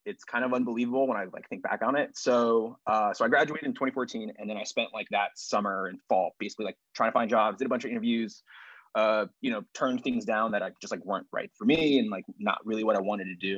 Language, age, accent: English, 20-39, American